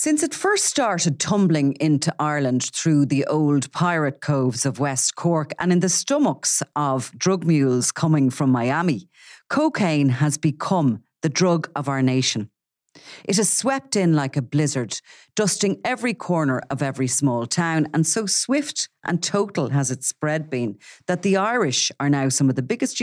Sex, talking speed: female, 170 wpm